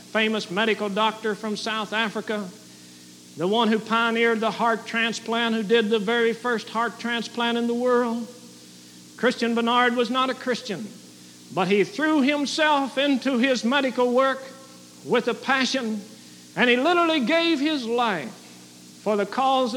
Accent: American